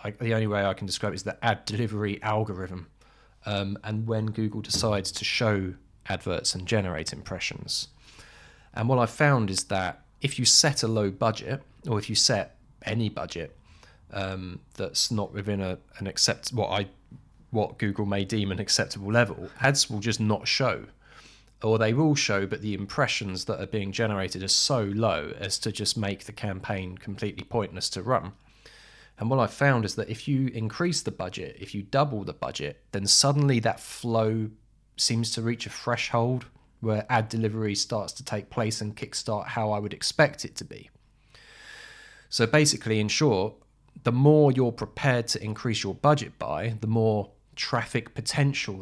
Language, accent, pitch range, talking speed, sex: English, British, 100-120 Hz, 180 wpm, male